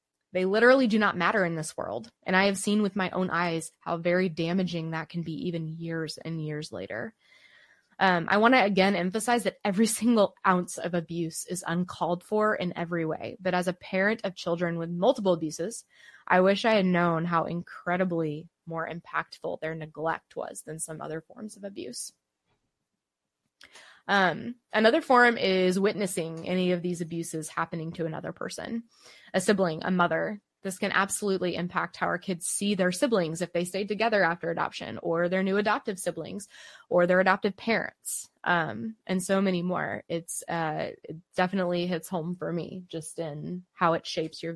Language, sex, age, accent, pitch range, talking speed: English, female, 20-39, American, 165-205 Hz, 180 wpm